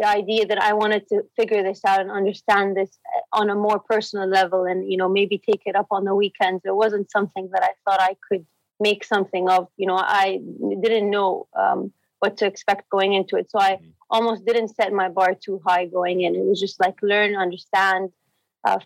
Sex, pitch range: female, 190-215 Hz